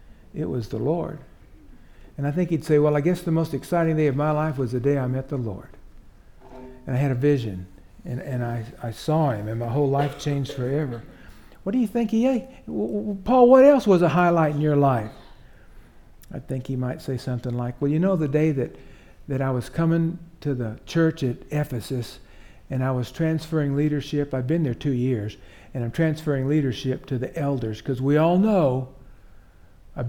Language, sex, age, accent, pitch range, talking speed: English, male, 60-79, American, 120-155 Hz, 205 wpm